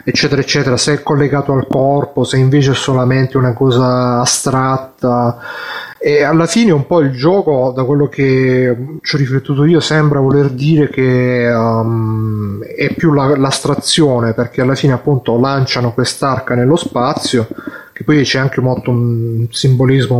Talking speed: 145 wpm